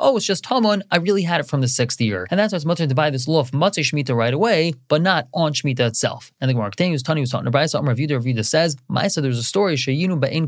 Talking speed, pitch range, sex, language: 275 wpm, 130-175 Hz, male, English